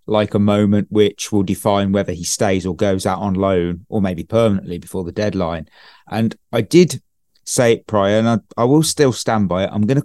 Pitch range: 100-120 Hz